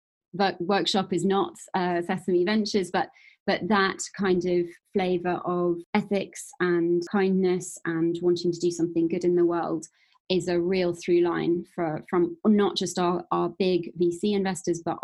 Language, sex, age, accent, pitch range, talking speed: English, female, 20-39, British, 175-190 Hz, 165 wpm